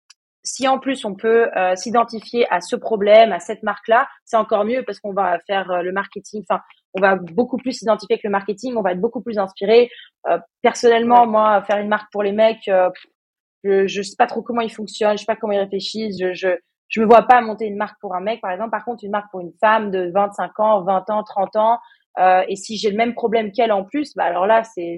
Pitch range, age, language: 195-235 Hz, 20-39, French